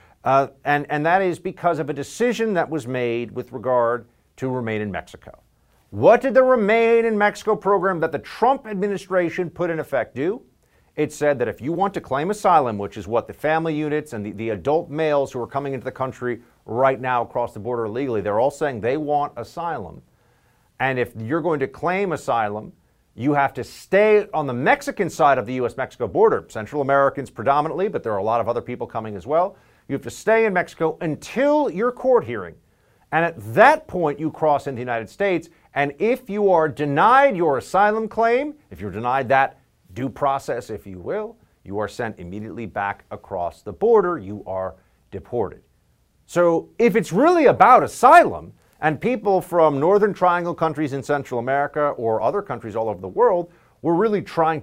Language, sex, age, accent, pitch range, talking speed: English, male, 50-69, American, 120-190 Hz, 195 wpm